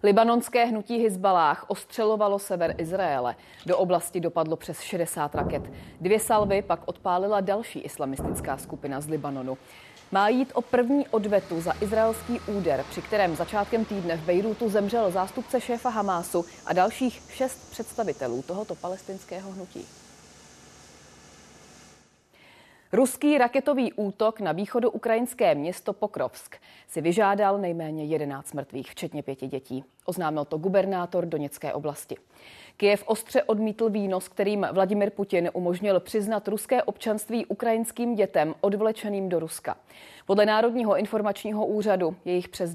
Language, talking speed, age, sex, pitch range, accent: Czech, 125 wpm, 30-49, female, 160-210 Hz, native